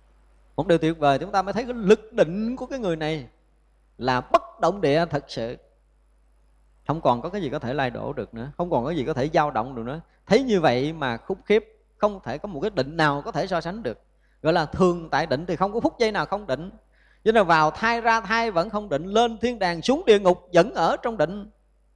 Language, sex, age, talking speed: Vietnamese, male, 20-39, 250 wpm